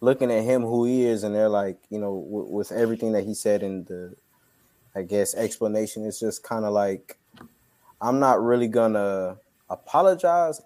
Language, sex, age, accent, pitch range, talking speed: English, male, 20-39, American, 105-125 Hz, 185 wpm